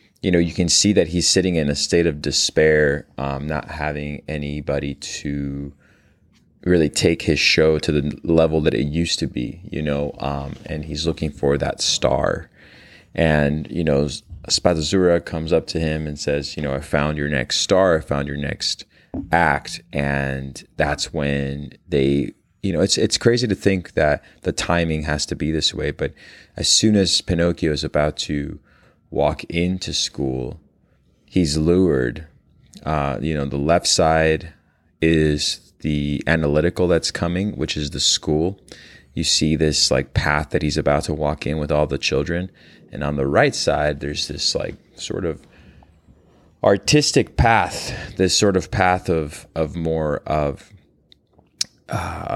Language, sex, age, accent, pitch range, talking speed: English, male, 30-49, American, 70-85 Hz, 165 wpm